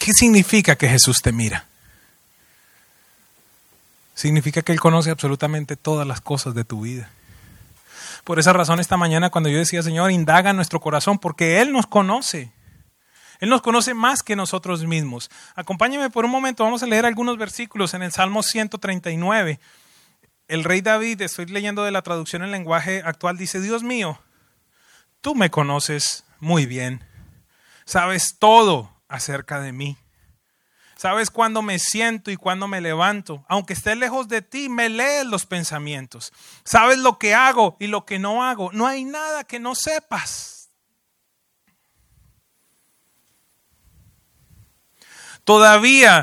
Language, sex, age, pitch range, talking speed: English, male, 30-49, 155-220 Hz, 145 wpm